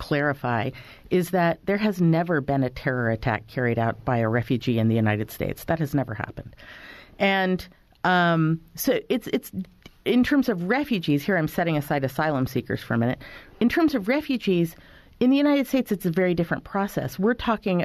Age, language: 40-59, English